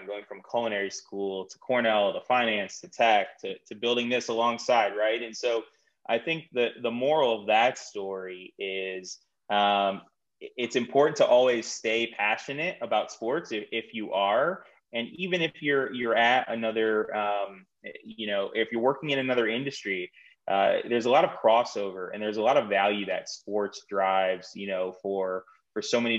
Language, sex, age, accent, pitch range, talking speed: English, male, 20-39, American, 100-115 Hz, 175 wpm